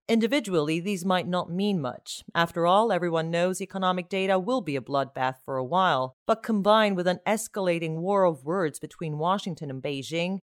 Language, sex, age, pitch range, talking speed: English, female, 40-59, 150-200 Hz, 180 wpm